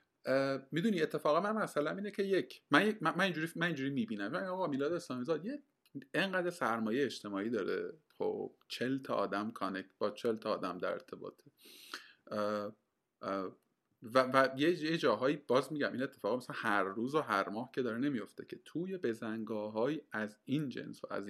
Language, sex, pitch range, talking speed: Persian, male, 115-185 Hz, 165 wpm